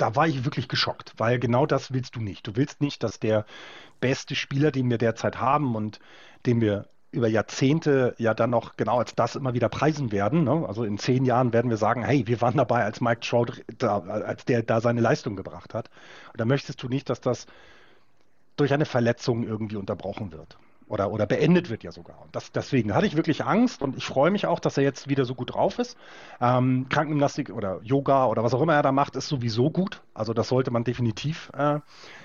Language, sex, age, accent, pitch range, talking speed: German, male, 30-49, German, 110-140 Hz, 220 wpm